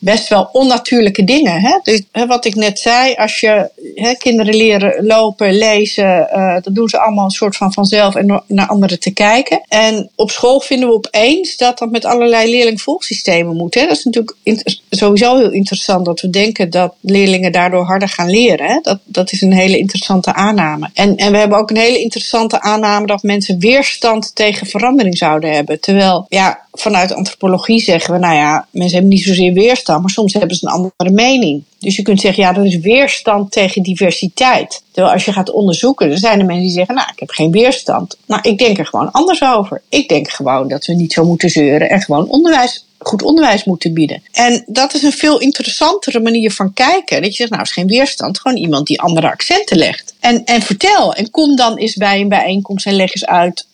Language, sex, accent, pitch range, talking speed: Dutch, female, Dutch, 185-235 Hz, 210 wpm